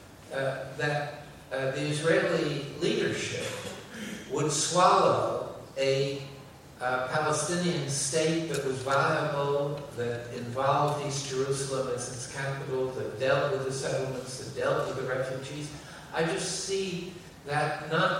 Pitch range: 130-165 Hz